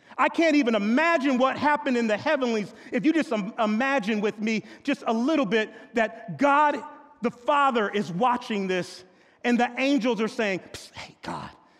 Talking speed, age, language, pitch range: 170 wpm, 40-59, English, 185-285 Hz